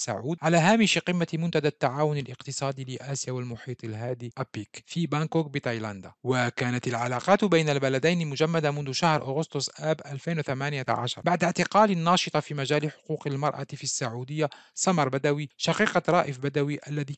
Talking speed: 135 wpm